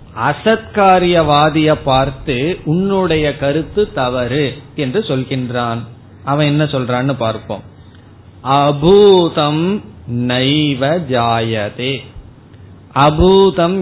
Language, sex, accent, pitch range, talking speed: Tamil, male, native, 120-155 Hz, 55 wpm